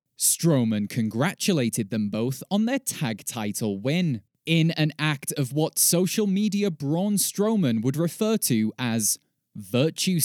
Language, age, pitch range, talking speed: English, 20-39, 125-190 Hz, 135 wpm